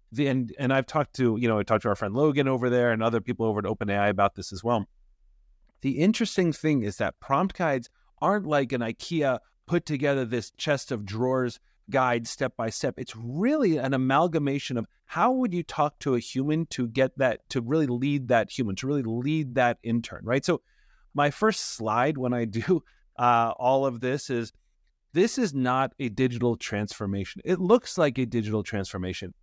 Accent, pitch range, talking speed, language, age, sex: American, 115-150 Hz, 195 wpm, English, 30-49, male